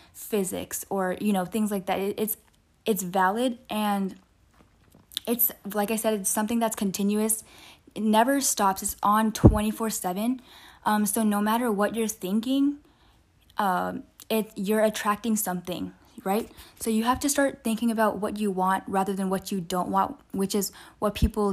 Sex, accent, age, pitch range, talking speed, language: female, American, 10-29, 195-225 Hz, 165 wpm, English